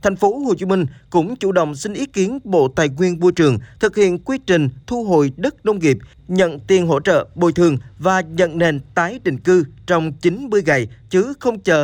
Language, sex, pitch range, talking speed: Vietnamese, male, 140-180 Hz, 220 wpm